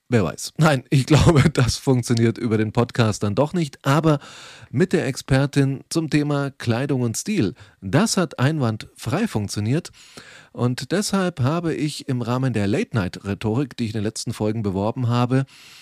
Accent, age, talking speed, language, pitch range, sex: German, 30-49, 160 wpm, German, 110-140 Hz, male